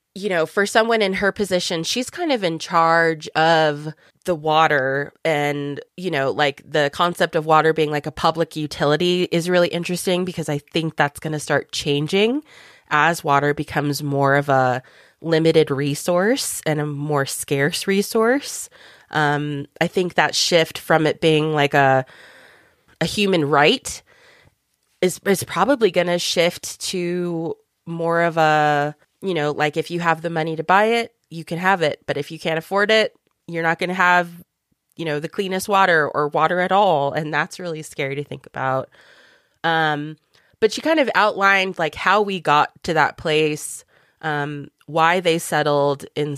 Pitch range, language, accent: 145-180 Hz, English, American